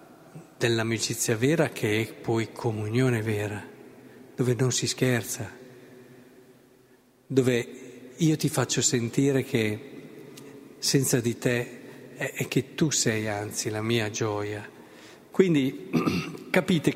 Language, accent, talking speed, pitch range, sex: Italian, native, 105 wpm, 120-140 Hz, male